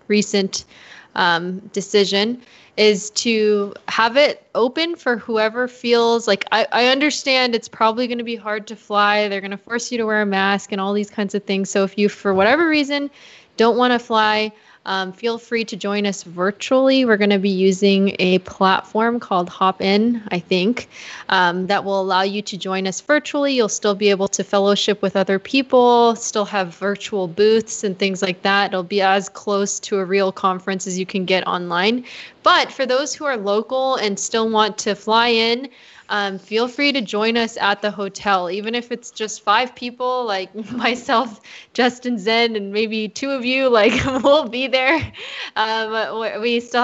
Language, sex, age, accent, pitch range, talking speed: English, female, 20-39, American, 195-235 Hz, 190 wpm